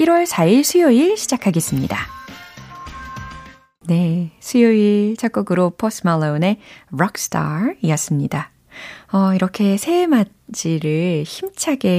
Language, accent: Korean, native